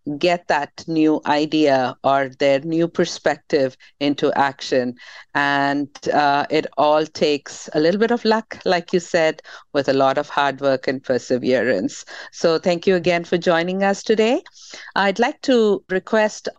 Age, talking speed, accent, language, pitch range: 50-69, 155 wpm, Indian, English, 145-185 Hz